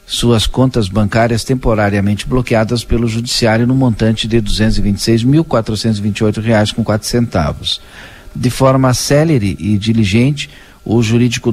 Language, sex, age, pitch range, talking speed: Portuguese, male, 50-69, 105-125 Hz, 100 wpm